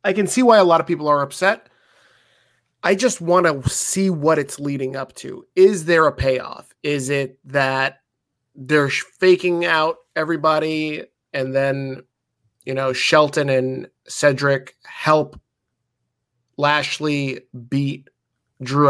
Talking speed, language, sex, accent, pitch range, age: 135 wpm, English, male, American, 130-175 Hz, 20-39